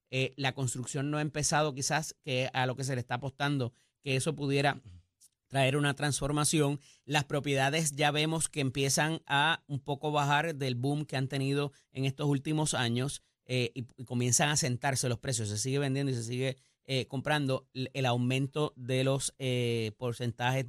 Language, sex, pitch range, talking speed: Spanish, male, 135-185 Hz, 180 wpm